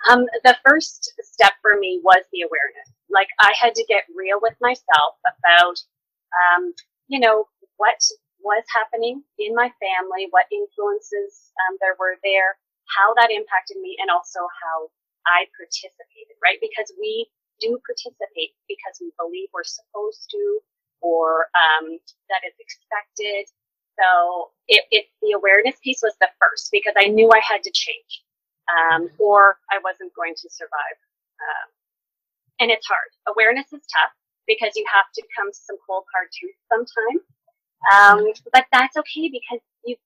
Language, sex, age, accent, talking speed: English, female, 30-49, American, 155 wpm